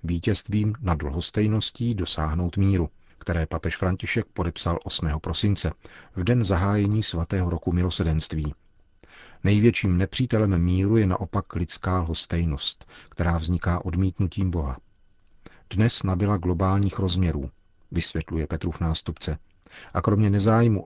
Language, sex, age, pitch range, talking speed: Czech, male, 40-59, 85-100 Hz, 110 wpm